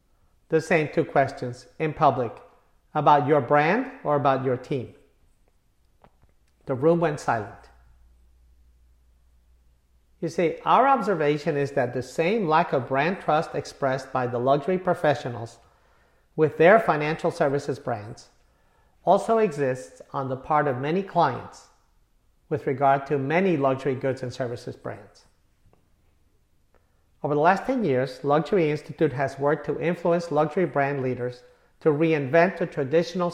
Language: English